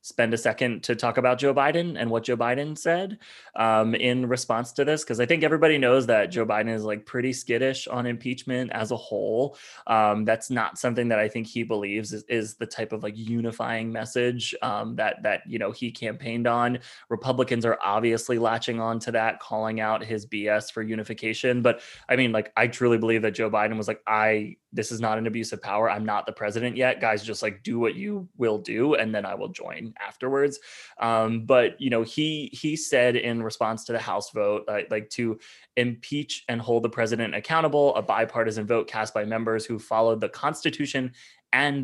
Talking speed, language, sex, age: 210 wpm, English, male, 20-39